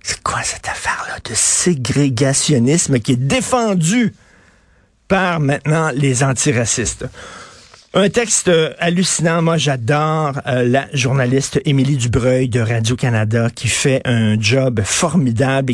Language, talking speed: French, 115 wpm